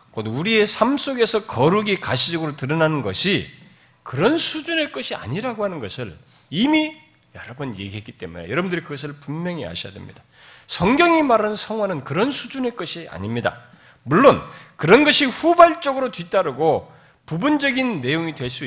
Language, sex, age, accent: Korean, male, 40-59, native